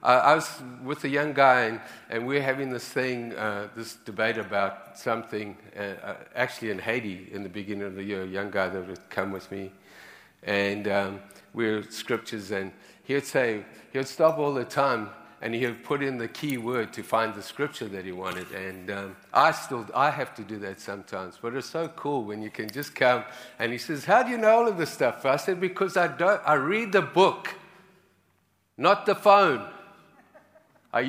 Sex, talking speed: male, 210 wpm